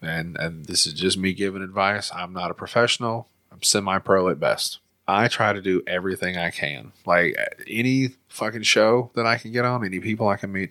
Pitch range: 95-110 Hz